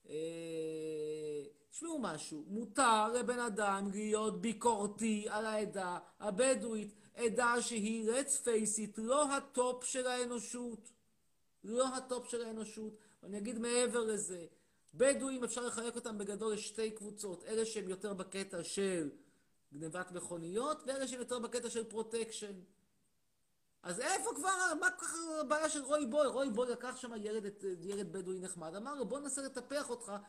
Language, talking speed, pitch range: Hebrew, 140 wpm, 205-260 Hz